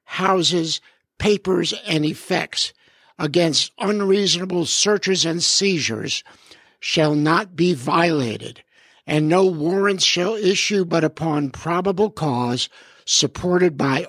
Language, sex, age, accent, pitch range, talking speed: English, male, 60-79, American, 145-185 Hz, 100 wpm